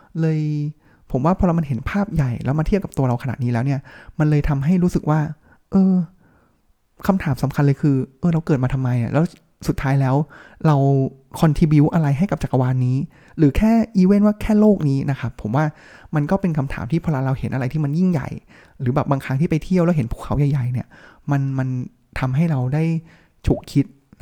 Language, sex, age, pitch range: Thai, male, 20-39, 130-165 Hz